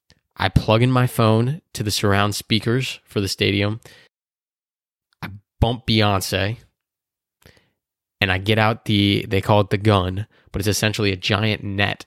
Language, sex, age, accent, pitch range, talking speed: English, male, 20-39, American, 100-115 Hz, 155 wpm